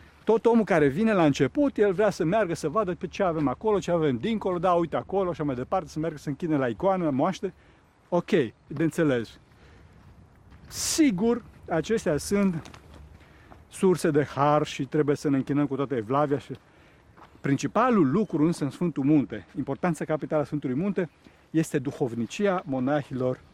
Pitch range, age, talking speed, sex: 135-185 Hz, 50-69, 165 wpm, male